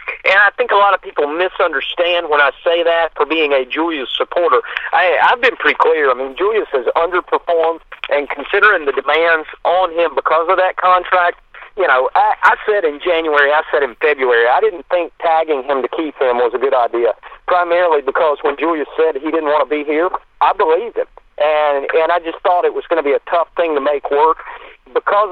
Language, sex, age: English, male, 40-59